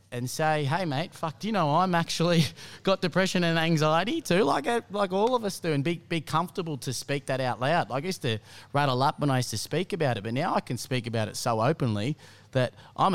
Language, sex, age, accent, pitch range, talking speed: English, male, 30-49, Australian, 125-160 Hz, 250 wpm